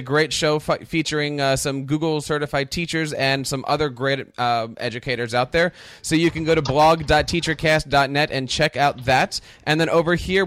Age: 10-29